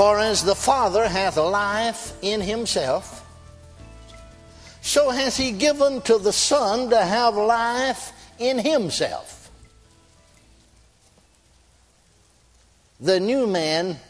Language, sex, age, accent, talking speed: English, male, 60-79, American, 100 wpm